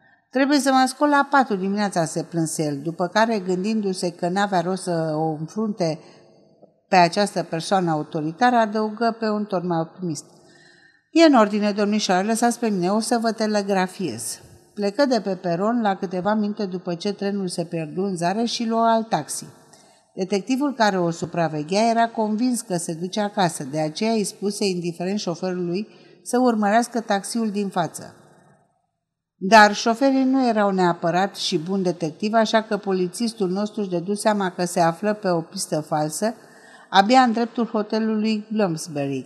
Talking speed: 160 wpm